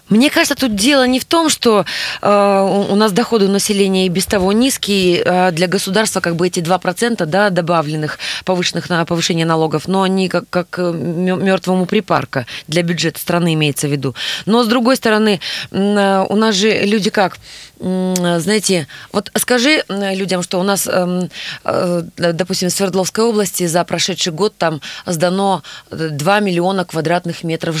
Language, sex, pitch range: Russian, female, 170-210 Hz